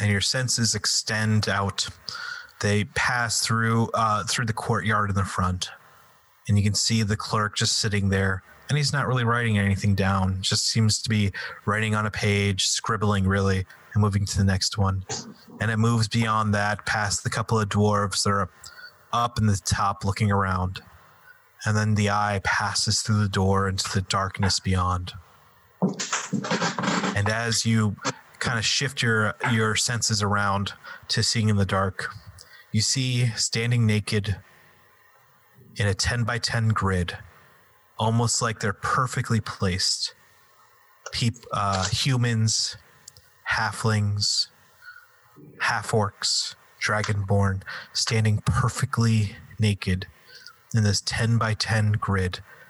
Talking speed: 140 wpm